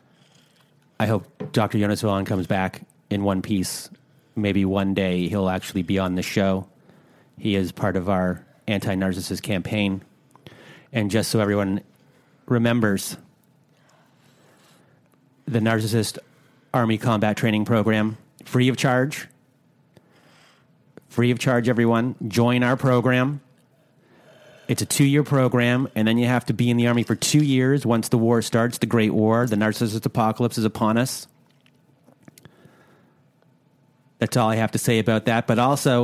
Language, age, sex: English, 30-49, male